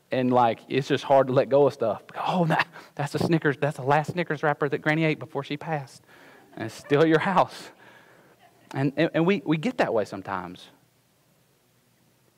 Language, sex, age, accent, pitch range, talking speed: English, male, 40-59, American, 145-185 Hz, 200 wpm